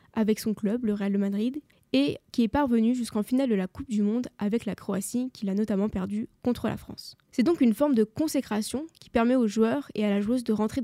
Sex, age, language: female, 10-29, French